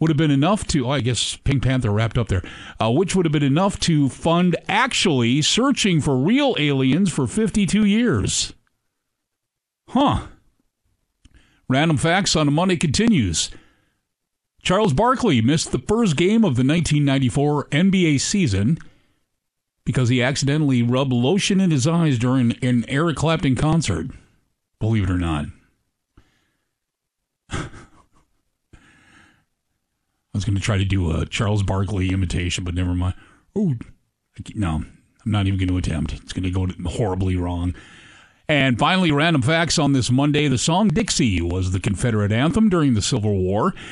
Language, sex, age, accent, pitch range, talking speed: English, male, 50-69, American, 95-155 Hz, 150 wpm